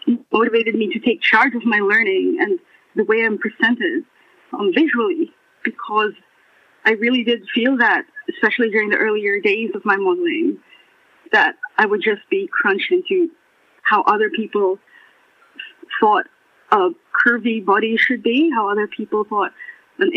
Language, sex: English, female